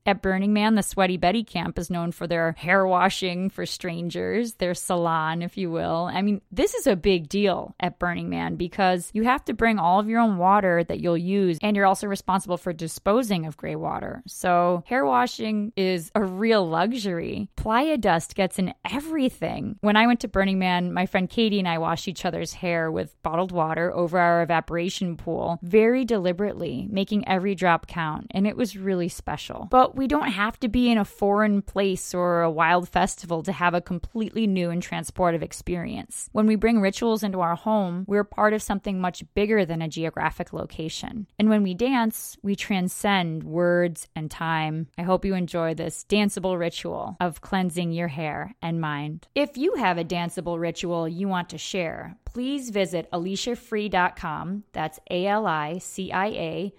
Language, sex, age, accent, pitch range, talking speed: English, female, 20-39, American, 170-210 Hz, 185 wpm